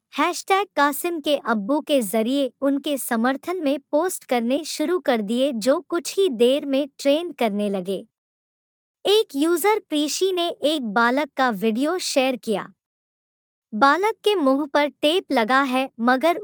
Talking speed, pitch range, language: 145 wpm, 240-320 Hz, Hindi